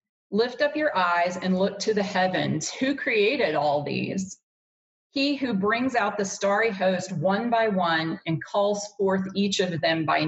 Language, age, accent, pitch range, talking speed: English, 40-59, American, 180-215 Hz, 175 wpm